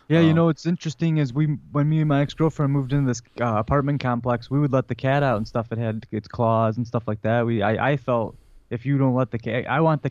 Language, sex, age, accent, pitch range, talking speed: English, male, 20-39, American, 115-140 Hz, 280 wpm